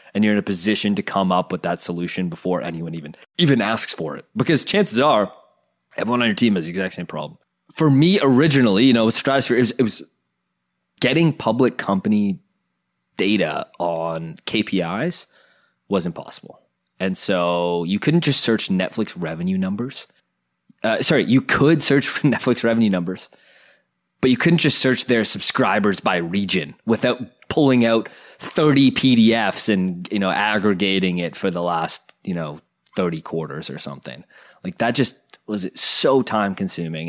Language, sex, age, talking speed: English, male, 20-39, 160 wpm